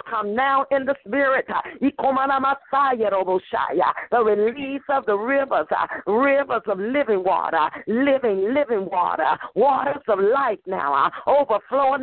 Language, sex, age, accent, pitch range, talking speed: English, female, 50-69, American, 250-275 Hz, 110 wpm